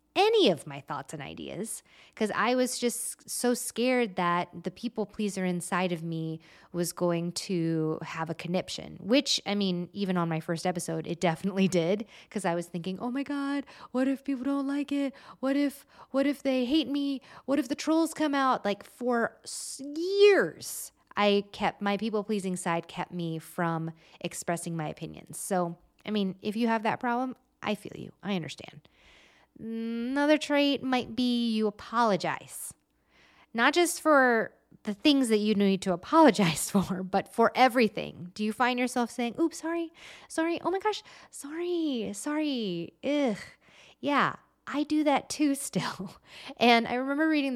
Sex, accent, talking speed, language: female, American, 170 wpm, English